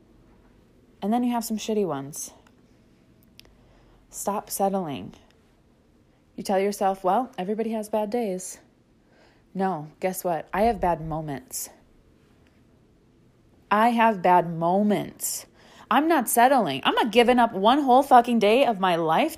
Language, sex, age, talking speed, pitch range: English, female, 20-39, 130 wpm, 180-240 Hz